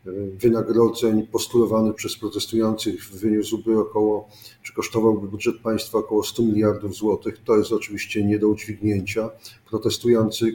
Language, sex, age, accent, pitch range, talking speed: Polish, male, 40-59, native, 110-120 Hz, 120 wpm